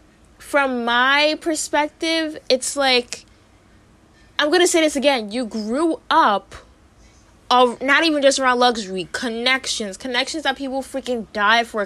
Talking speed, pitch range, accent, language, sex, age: 130 wpm, 185-255 Hz, American, English, female, 20-39